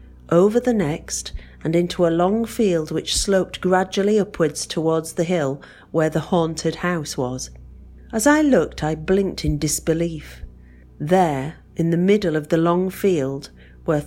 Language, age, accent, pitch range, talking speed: English, 40-59, British, 140-185 Hz, 155 wpm